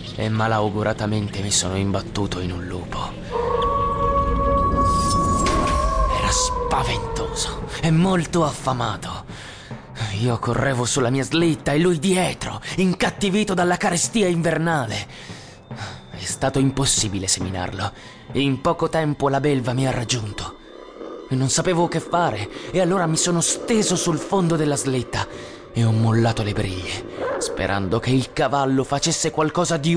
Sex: male